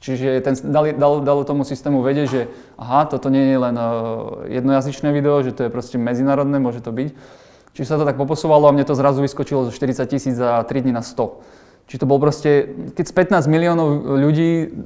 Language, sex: Slovak, male